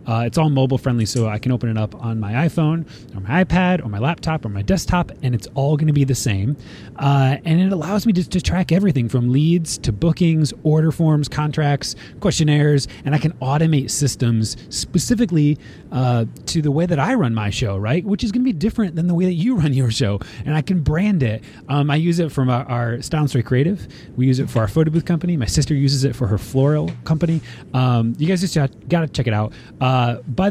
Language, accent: English, American